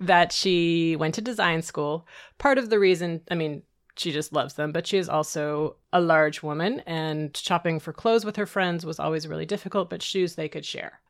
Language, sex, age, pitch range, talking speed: English, female, 30-49, 155-195 Hz, 210 wpm